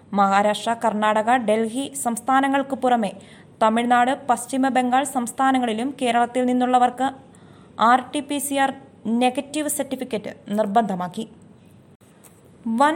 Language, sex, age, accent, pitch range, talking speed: Malayalam, female, 20-39, native, 215-265 Hz, 70 wpm